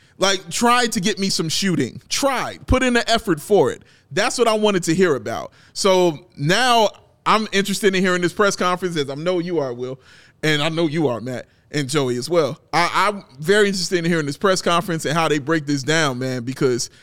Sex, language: male, English